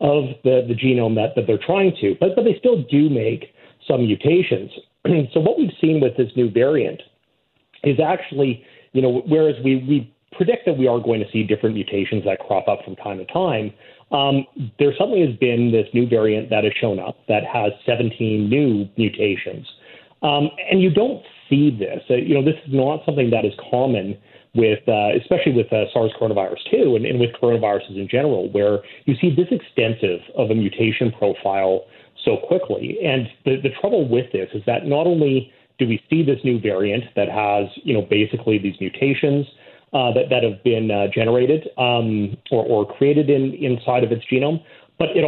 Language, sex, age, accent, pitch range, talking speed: English, male, 40-59, American, 110-140 Hz, 195 wpm